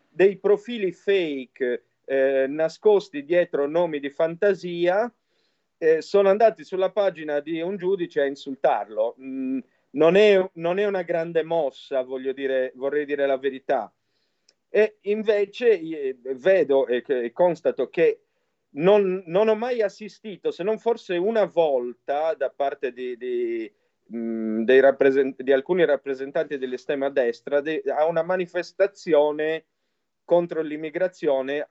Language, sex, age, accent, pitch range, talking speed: Italian, male, 40-59, native, 140-200 Hz, 130 wpm